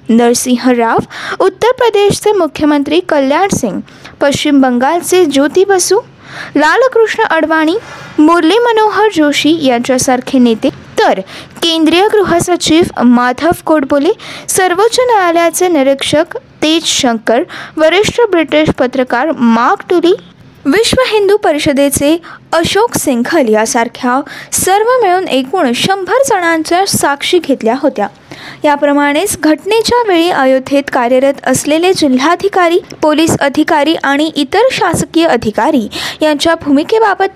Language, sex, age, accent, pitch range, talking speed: Marathi, female, 20-39, native, 270-375 Hz, 105 wpm